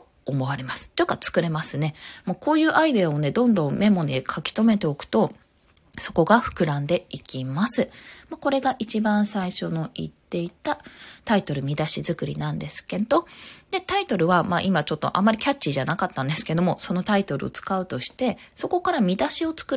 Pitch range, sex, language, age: 155-250 Hz, female, Japanese, 20-39